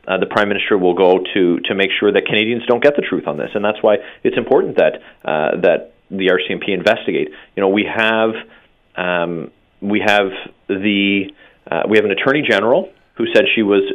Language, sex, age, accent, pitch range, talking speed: English, male, 30-49, American, 95-125 Hz, 200 wpm